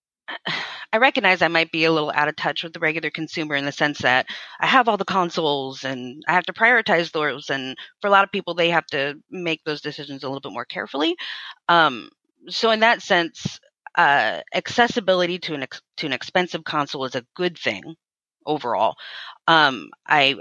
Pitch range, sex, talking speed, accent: 145-185 Hz, female, 190 wpm, American